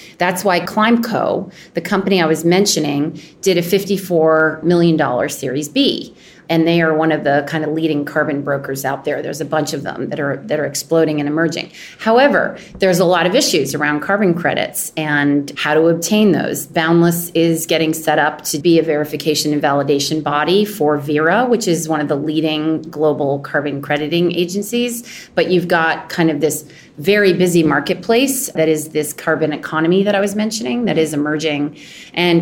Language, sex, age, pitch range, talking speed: English, female, 30-49, 155-190 Hz, 180 wpm